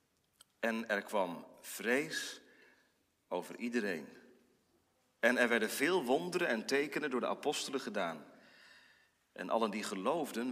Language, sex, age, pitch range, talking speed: Dutch, male, 40-59, 115-165 Hz, 120 wpm